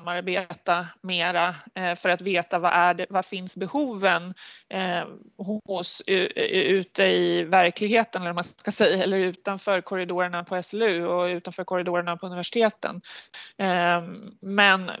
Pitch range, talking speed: 175-210 Hz, 120 wpm